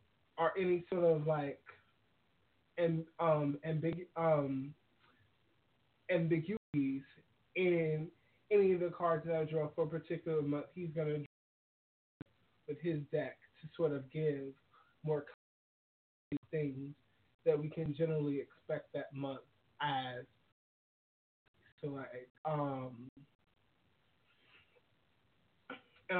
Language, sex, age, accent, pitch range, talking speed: English, male, 20-39, American, 125-165 Hz, 105 wpm